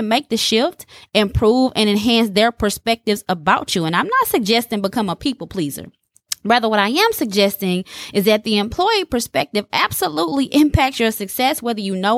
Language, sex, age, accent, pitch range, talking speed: English, female, 20-39, American, 195-255 Hz, 175 wpm